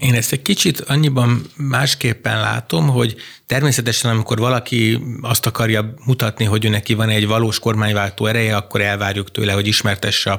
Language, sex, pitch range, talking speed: Hungarian, male, 100-125 Hz, 155 wpm